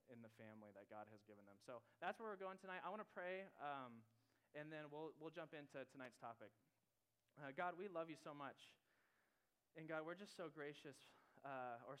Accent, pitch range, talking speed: American, 120-150 Hz, 210 wpm